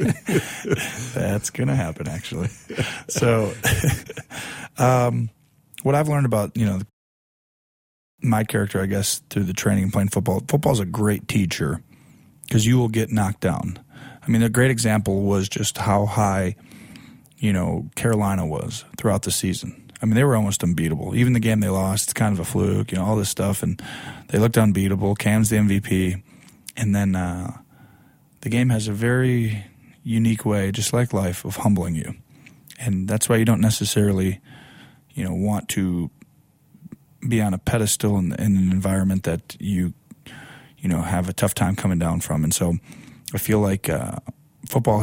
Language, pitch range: English, 95-120 Hz